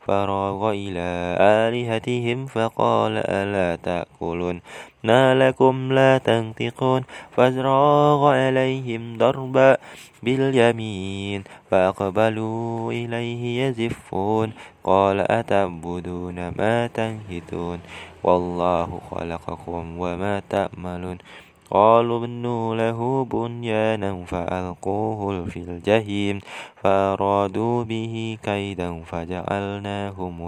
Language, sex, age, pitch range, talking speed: Indonesian, male, 20-39, 90-120 Hz, 70 wpm